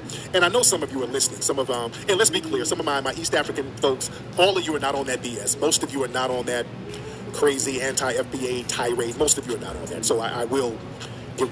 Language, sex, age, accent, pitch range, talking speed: English, male, 40-59, American, 130-175 Hz, 270 wpm